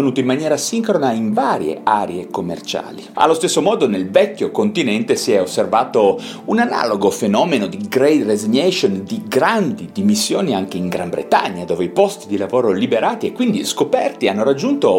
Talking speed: 160 wpm